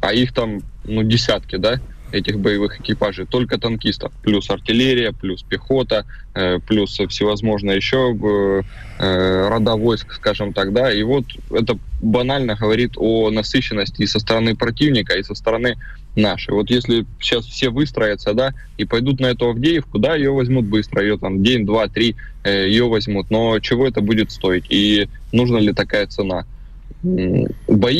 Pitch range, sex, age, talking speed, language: 100-120 Hz, male, 20-39, 160 wpm, Russian